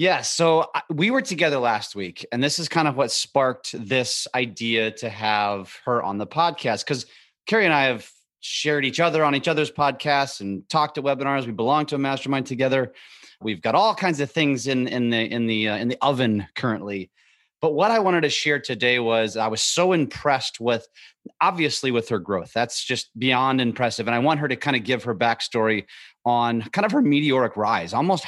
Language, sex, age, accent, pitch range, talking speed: English, male, 30-49, American, 115-145 Hz, 210 wpm